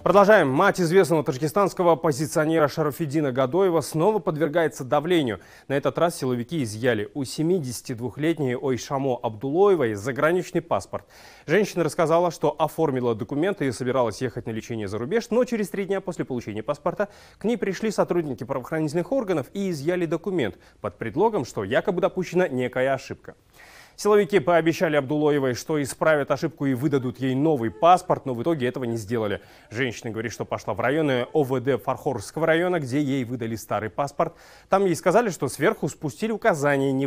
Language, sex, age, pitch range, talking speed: Russian, male, 30-49, 125-170 Hz, 155 wpm